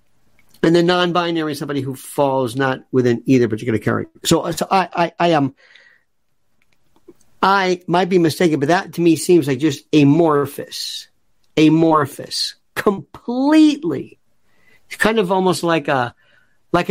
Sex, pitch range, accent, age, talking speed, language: male, 125-195 Hz, American, 50-69, 140 wpm, English